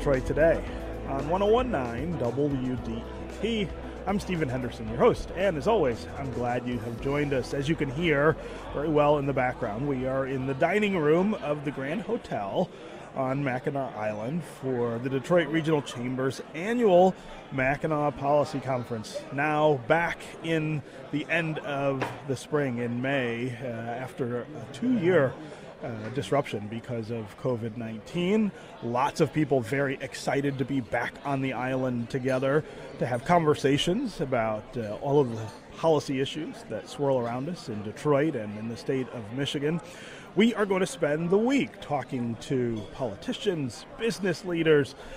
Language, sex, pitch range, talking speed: English, male, 125-160 Hz, 150 wpm